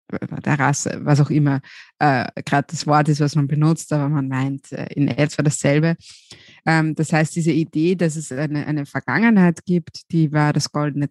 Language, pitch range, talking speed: German, 140-165 Hz, 190 wpm